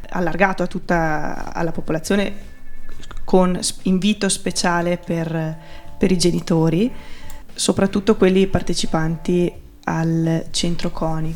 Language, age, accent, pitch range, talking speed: Italian, 20-39, native, 160-185 Hz, 95 wpm